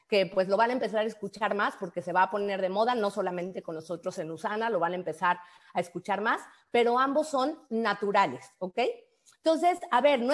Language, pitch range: Spanish, 205-275 Hz